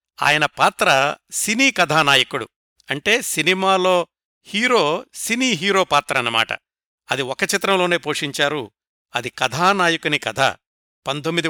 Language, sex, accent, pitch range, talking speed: Telugu, male, native, 135-180 Hz, 100 wpm